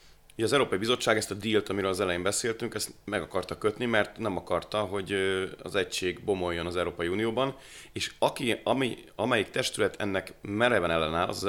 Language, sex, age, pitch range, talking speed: Hungarian, male, 30-49, 90-110 Hz, 185 wpm